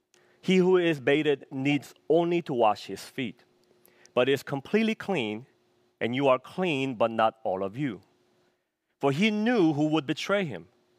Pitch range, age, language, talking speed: 115-175 Hz, 40-59, English, 165 wpm